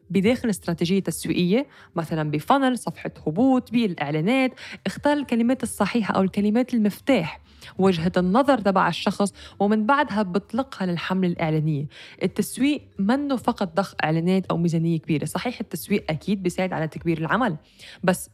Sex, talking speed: female, 130 wpm